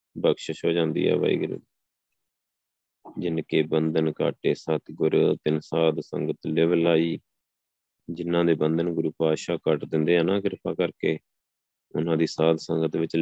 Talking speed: 140 wpm